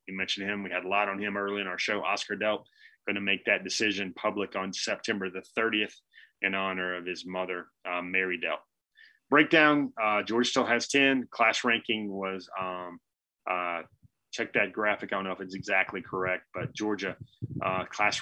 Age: 30-49